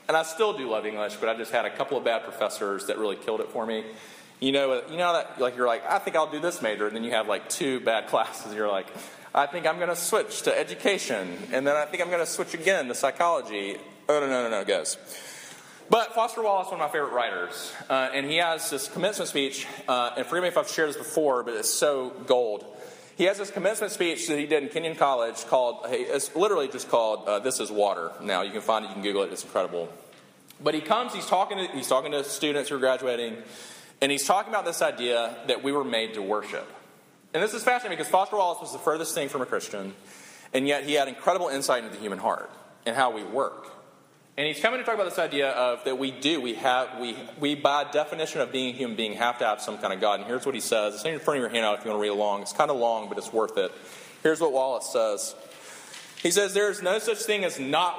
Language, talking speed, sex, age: English, 260 wpm, male, 30-49